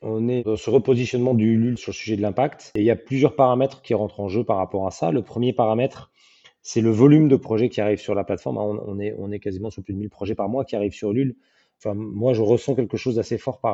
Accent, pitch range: French, 105-135 Hz